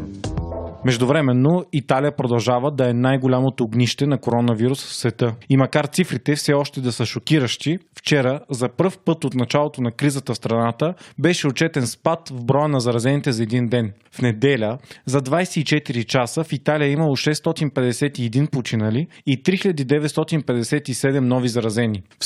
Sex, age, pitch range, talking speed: male, 30-49, 125-150 Hz, 150 wpm